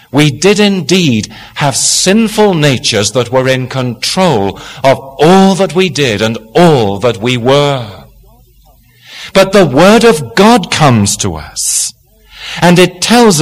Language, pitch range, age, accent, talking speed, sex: English, 110-160 Hz, 40-59, British, 140 wpm, male